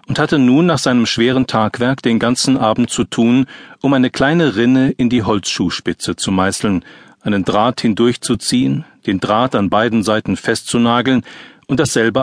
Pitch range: 100-125 Hz